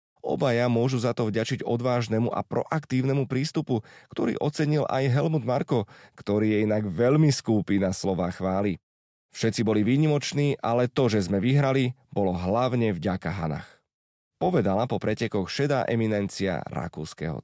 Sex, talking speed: male, 140 wpm